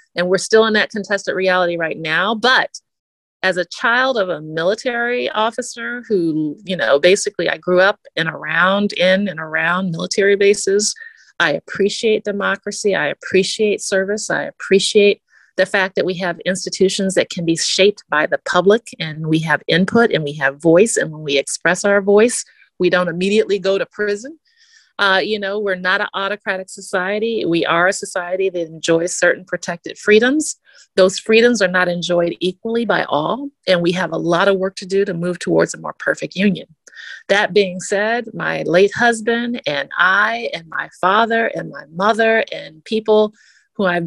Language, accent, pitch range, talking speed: English, American, 180-220 Hz, 175 wpm